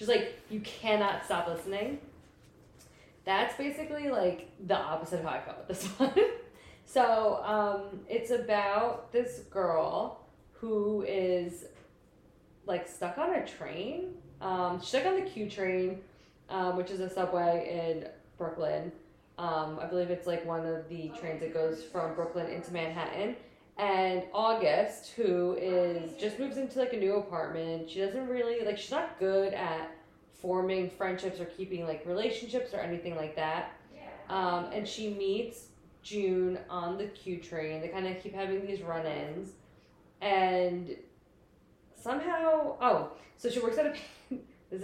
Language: English